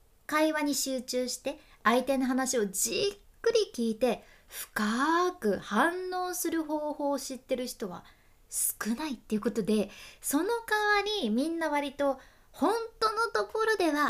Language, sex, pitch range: Japanese, female, 215-345 Hz